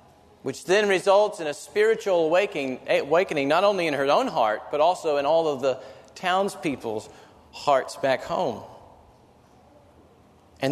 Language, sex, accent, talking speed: English, male, American, 140 wpm